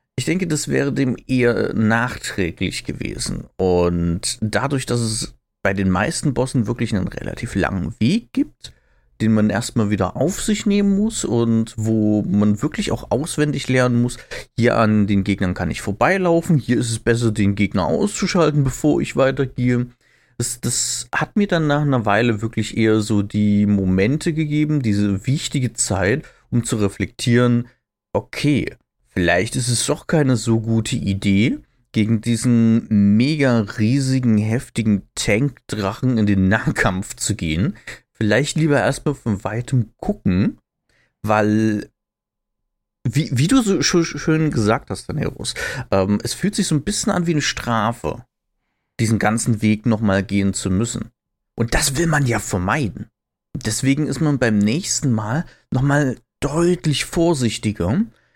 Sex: male